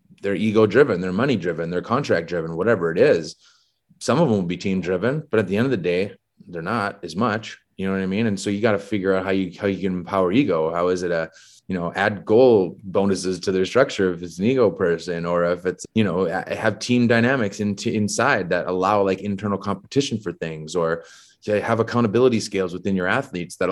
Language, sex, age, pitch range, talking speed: English, male, 30-49, 90-110 Hz, 225 wpm